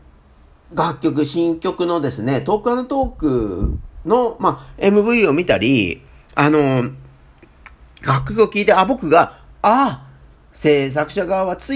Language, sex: Japanese, male